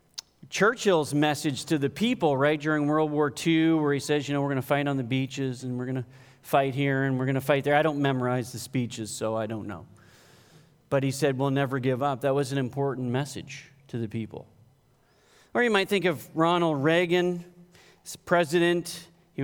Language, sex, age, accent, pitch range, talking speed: English, male, 40-59, American, 130-160 Hz, 205 wpm